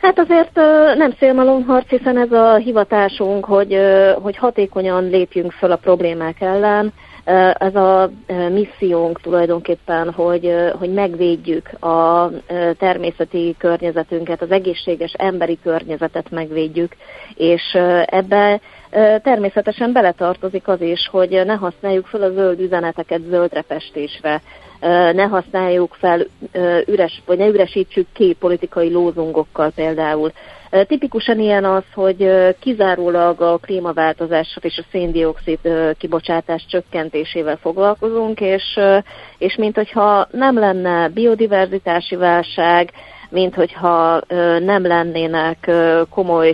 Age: 30-49